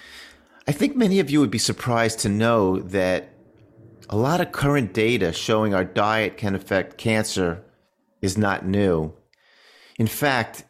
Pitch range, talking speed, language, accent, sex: 100-125 Hz, 150 wpm, English, American, male